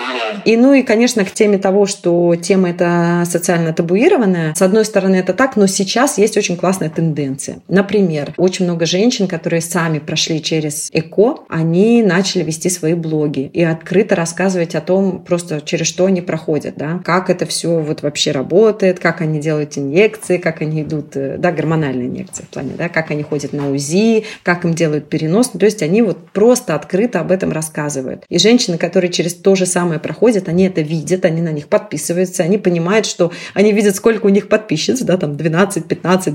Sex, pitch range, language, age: female, 160-195 Hz, Russian, 30-49